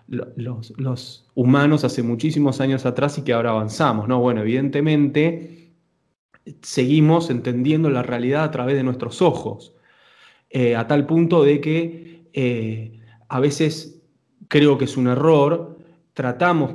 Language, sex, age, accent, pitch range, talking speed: Spanish, male, 20-39, Argentinian, 125-165 Hz, 135 wpm